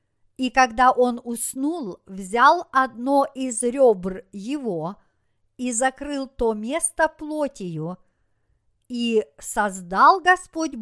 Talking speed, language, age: 95 wpm, Russian, 50-69